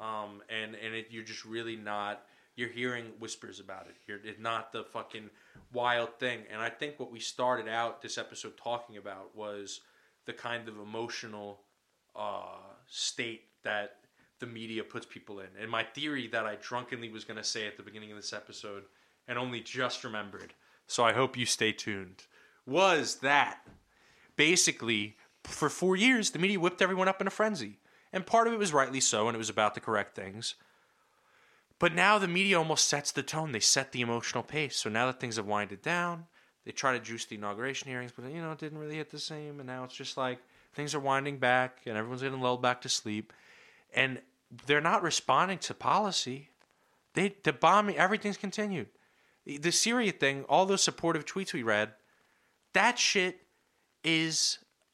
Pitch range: 110-155 Hz